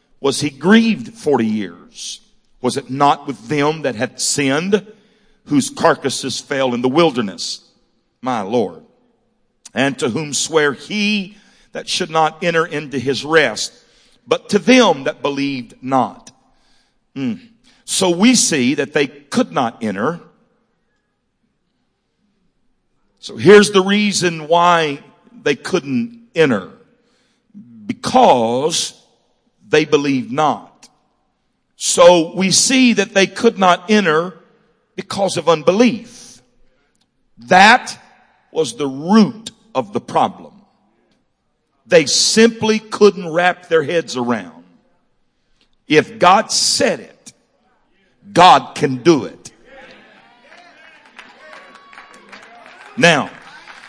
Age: 50-69